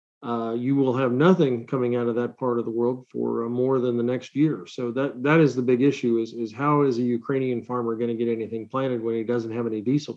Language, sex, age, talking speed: English, male, 40-59, 265 wpm